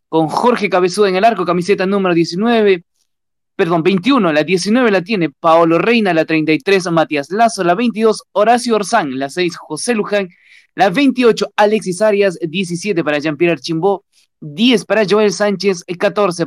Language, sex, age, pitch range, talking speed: Spanish, male, 20-39, 155-200 Hz, 155 wpm